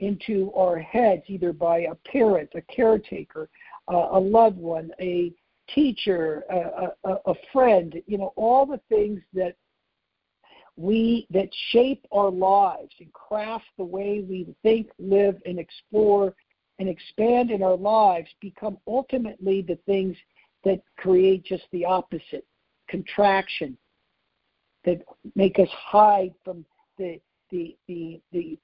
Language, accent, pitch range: English, American, 180-215 Hz